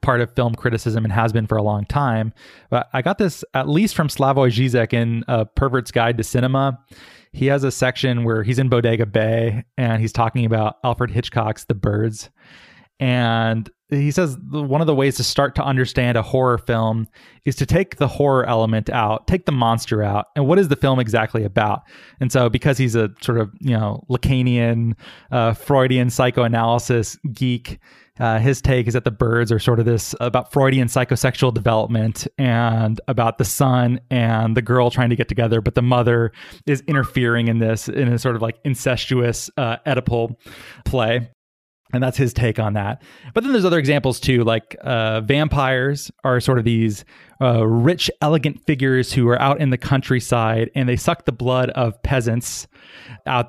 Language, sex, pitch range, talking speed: English, male, 115-135 Hz, 190 wpm